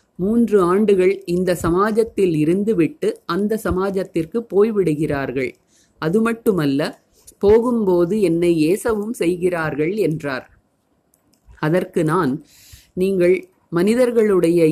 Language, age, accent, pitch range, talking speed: Tamil, 30-49, native, 165-220 Hz, 75 wpm